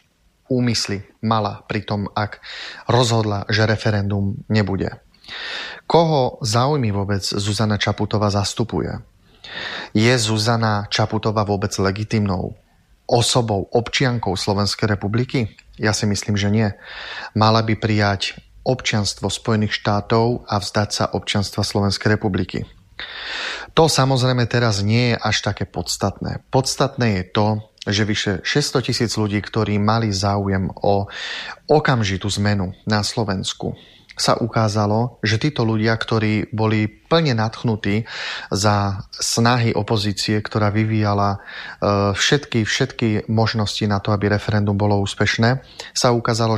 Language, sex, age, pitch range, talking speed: Slovak, male, 30-49, 105-120 Hz, 115 wpm